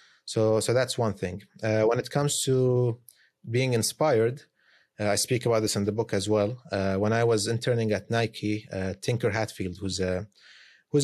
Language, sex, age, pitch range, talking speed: English, male, 30-49, 105-125 Hz, 180 wpm